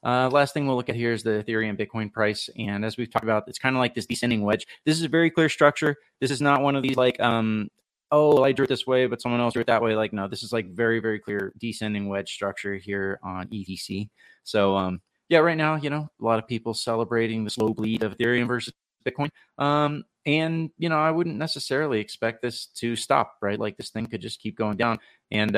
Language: English